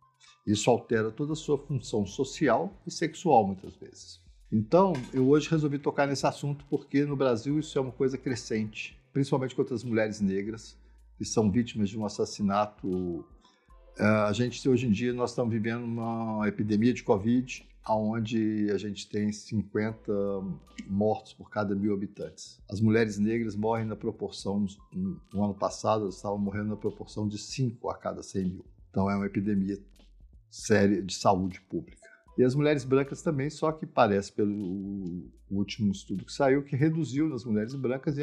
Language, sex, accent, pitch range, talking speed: Portuguese, male, Brazilian, 105-145 Hz, 170 wpm